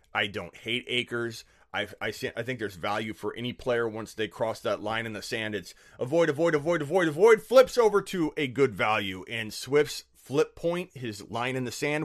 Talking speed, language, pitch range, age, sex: 205 wpm, English, 100-135 Hz, 30-49, male